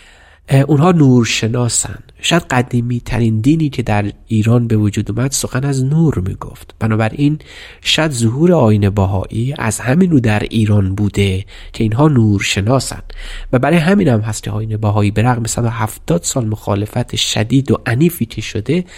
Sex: male